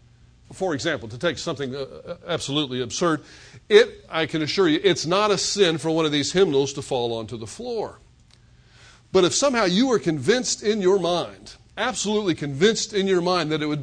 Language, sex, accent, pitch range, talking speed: English, male, American, 135-200 Hz, 185 wpm